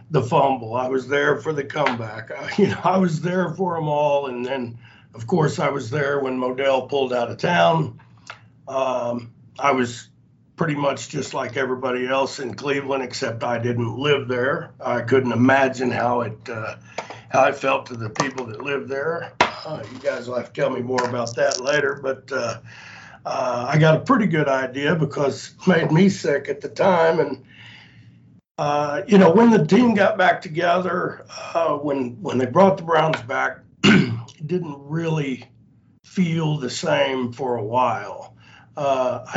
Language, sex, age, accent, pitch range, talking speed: English, male, 60-79, American, 125-155 Hz, 180 wpm